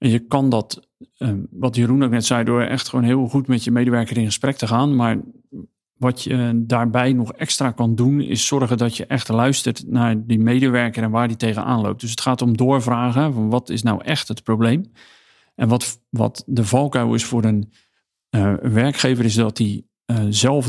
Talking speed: 205 wpm